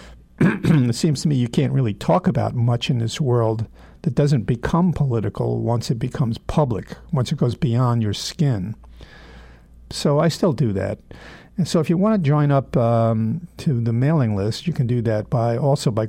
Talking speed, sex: 195 wpm, male